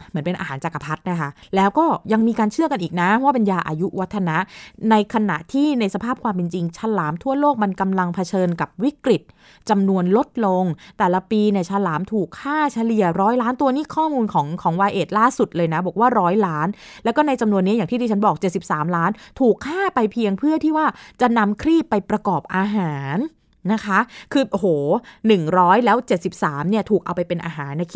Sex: female